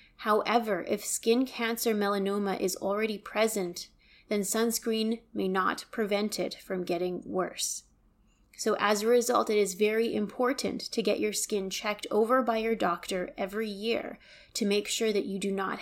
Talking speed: 165 wpm